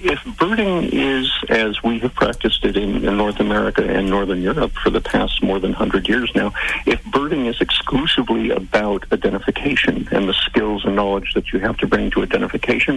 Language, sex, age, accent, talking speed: English, male, 50-69, American, 190 wpm